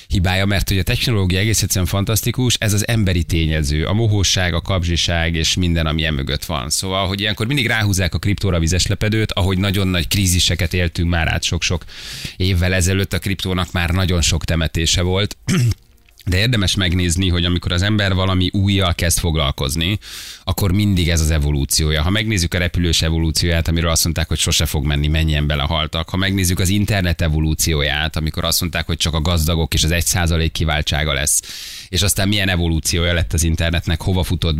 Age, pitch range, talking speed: 30-49, 80-95 Hz, 175 wpm